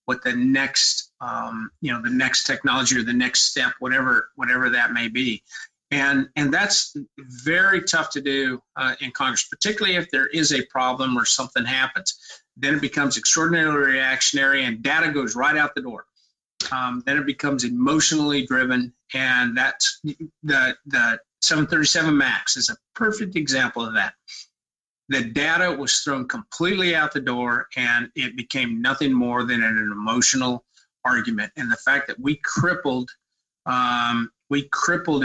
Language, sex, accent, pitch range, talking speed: English, male, American, 125-150 Hz, 160 wpm